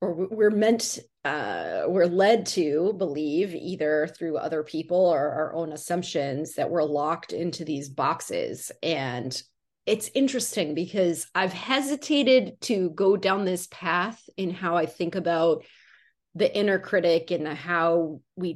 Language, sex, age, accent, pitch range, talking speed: English, female, 30-49, American, 160-190 Hz, 140 wpm